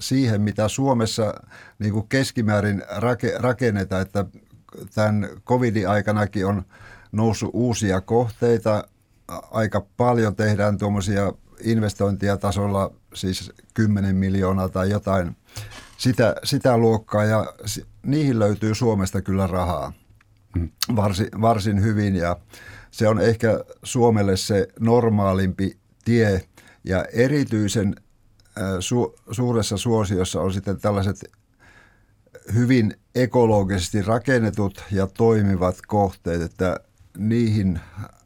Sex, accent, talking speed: male, native, 95 wpm